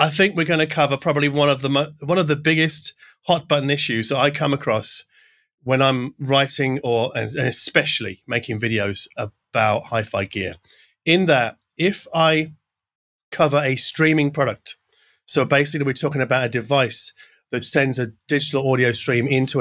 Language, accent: English, British